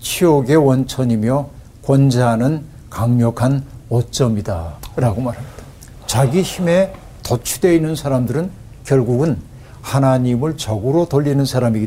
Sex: male